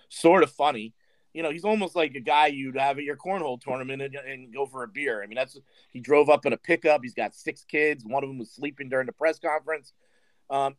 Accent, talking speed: American, 250 wpm